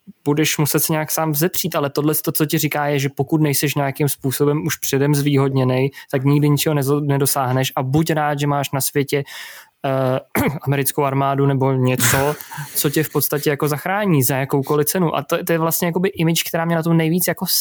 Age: 20-39